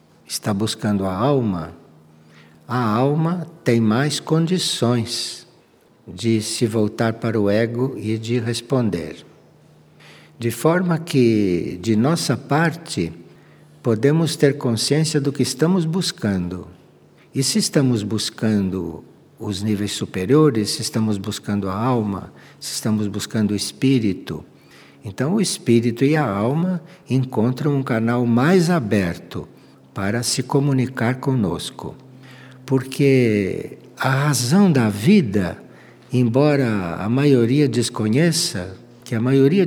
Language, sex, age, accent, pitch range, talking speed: Portuguese, male, 60-79, Brazilian, 105-145 Hz, 115 wpm